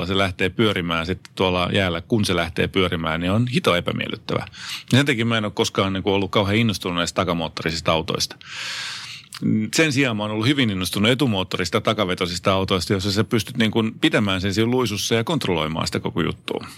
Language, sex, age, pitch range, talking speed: Finnish, male, 30-49, 90-115 Hz, 180 wpm